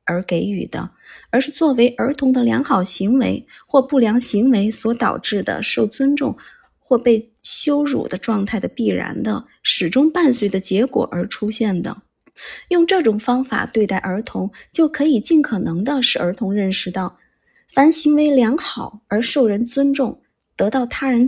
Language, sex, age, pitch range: Chinese, female, 20-39, 200-275 Hz